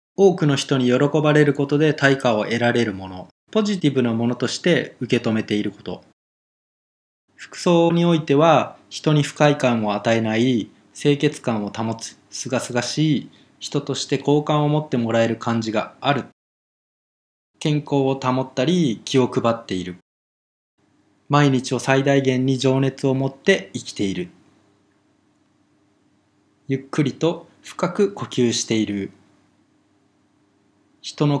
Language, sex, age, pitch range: Japanese, male, 20-39, 115-150 Hz